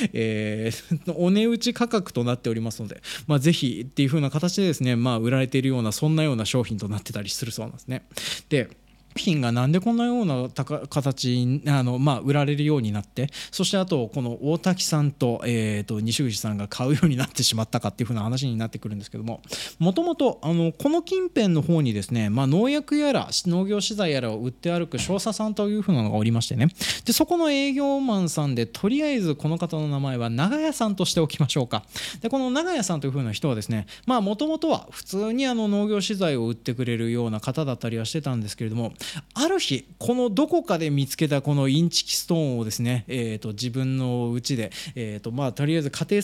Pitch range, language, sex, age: 120-205 Hz, Japanese, male, 20-39